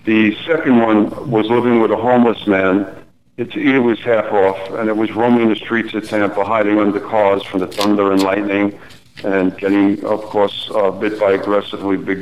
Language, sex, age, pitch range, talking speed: English, male, 50-69, 100-115 Hz, 195 wpm